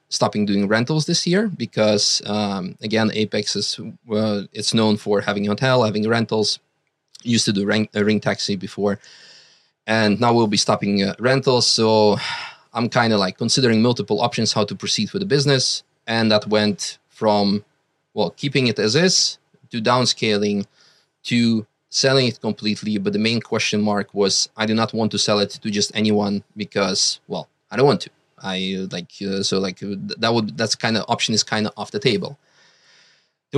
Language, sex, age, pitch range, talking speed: English, male, 20-39, 105-135 Hz, 185 wpm